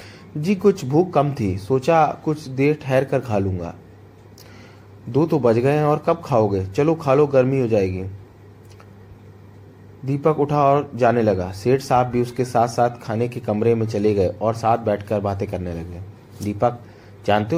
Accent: native